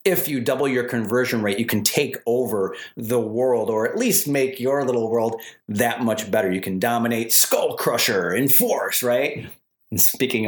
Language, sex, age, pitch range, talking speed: English, male, 30-49, 115-155 Hz, 185 wpm